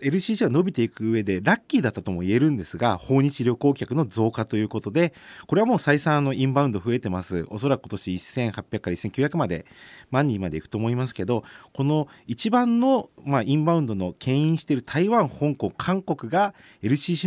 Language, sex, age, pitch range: Japanese, male, 40-59, 105-180 Hz